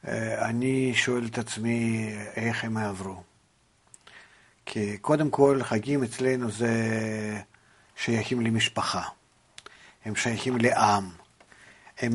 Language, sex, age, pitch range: Hebrew, male, 50-69, 110-125 Hz